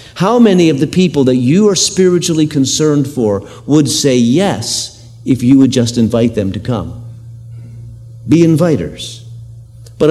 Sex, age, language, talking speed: male, 50-69, English, 150 wpm